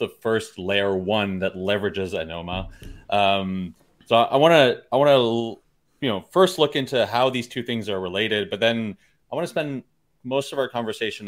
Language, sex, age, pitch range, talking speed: English, male, 30-49, 110-155 Hz, 190 wpm